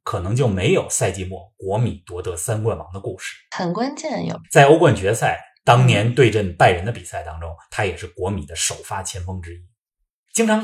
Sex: male